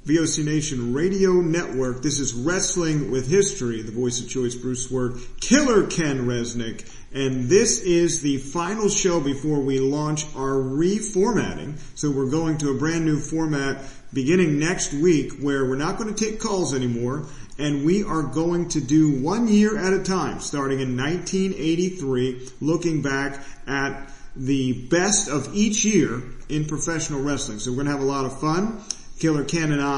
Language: English